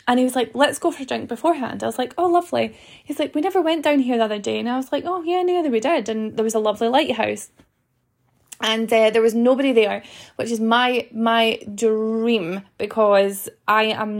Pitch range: 215-255 Hz